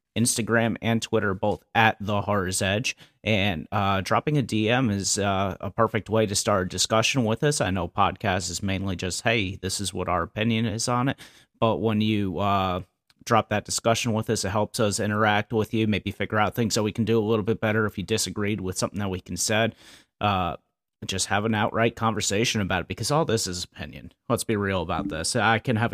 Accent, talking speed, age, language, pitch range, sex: American, 220 wpm, 30-49, English, 100-115 Hz, male